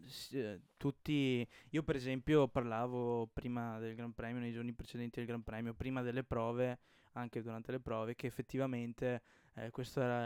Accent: native